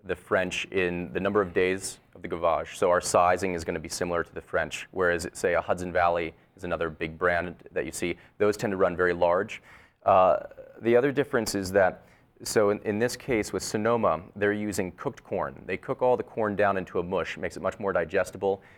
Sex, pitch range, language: male, 90-110 Hz, English